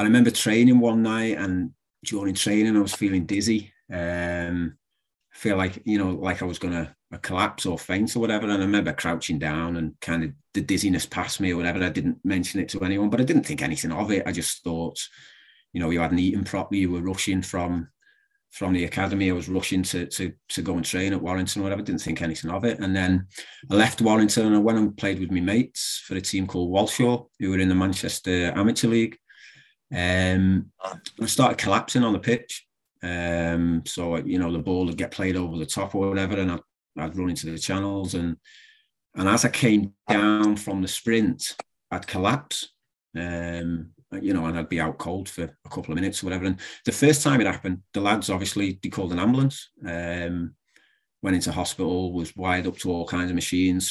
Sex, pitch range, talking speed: male, 90-105 Hz, 215 wpm